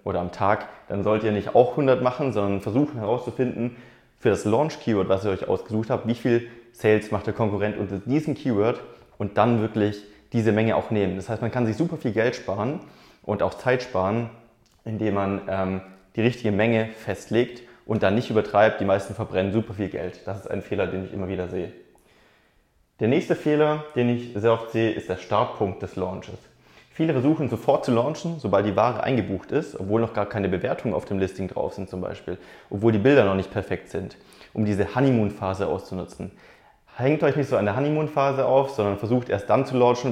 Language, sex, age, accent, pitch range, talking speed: German, male, 30-49, German, 100-125 Hz, 205 wpm